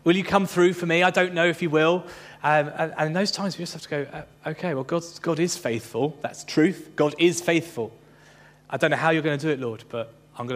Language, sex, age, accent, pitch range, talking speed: English, male, 30-49, British, 140-180 Hz, 265 wpm